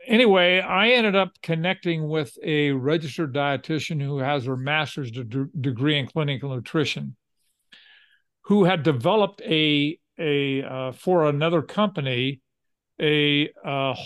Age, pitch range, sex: 50-69, 145-170 Hz, male